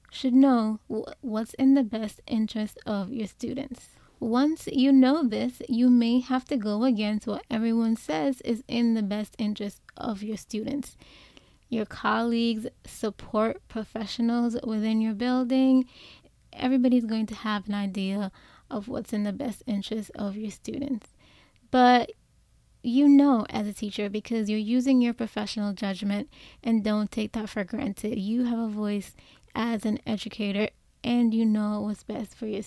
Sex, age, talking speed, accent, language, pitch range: female, 20-39, 155 wpm, American, English, 215-260 Hz